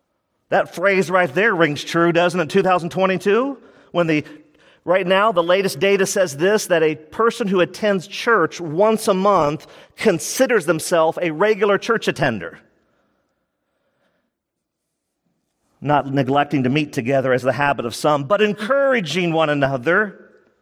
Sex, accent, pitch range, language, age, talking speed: male, American, 165-225 Hz, English, 40-59, 140 wpm